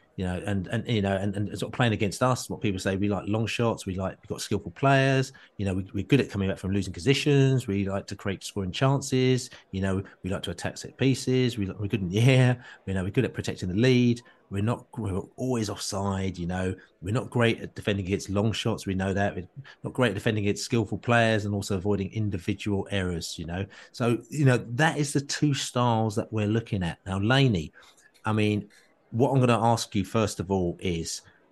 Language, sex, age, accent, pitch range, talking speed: English, male, 30-49, British, 95-125 Hz, 230 wpm